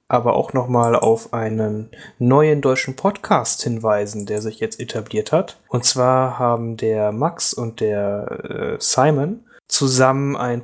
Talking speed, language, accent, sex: 140 wpm, German, German, male